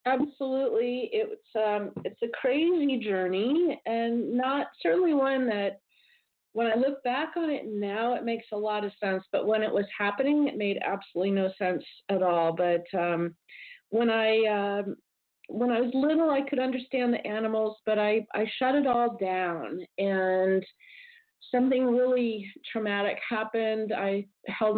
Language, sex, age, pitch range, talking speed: English, female, 40-59, 195-250 Hz, 155 wpm